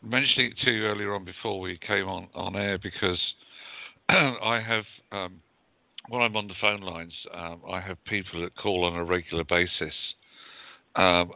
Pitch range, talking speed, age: 90-105 Hz, 170 wpm, 50-69